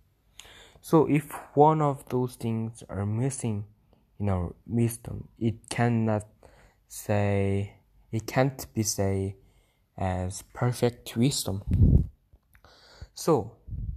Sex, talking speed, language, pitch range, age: male, 95 wpm, English, 105-125 Hz, 20-39